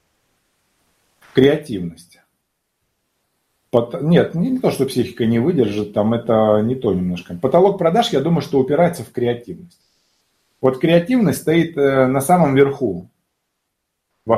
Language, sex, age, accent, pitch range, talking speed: Russian, male, 30-49, native, 110-145 Hz, 115 wpm